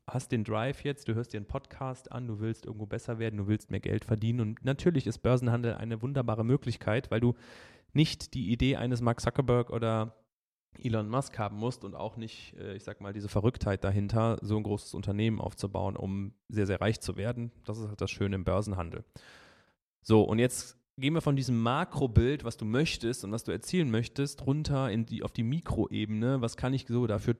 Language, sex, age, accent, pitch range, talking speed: German, male, 30-49, German, 110-130 Hz, 205 wpm